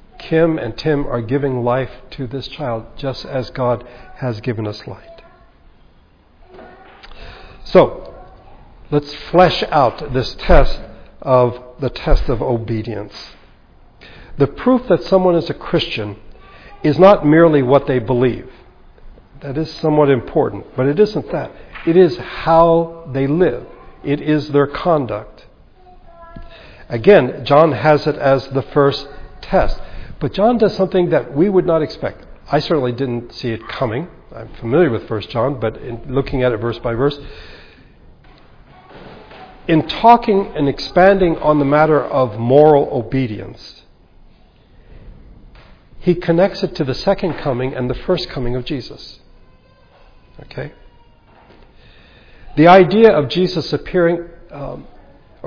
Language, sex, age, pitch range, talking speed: English, male, 60-79, 125-165 Hz, 135 wpm